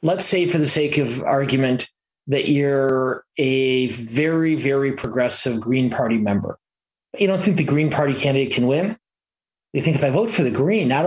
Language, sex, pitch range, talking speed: English, male, 125-155 Hz, 185 wpm